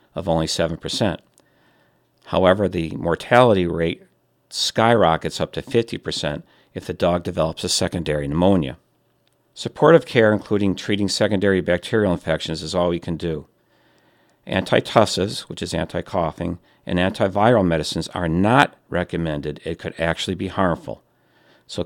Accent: American